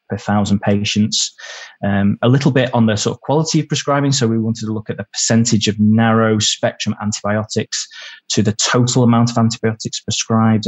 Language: English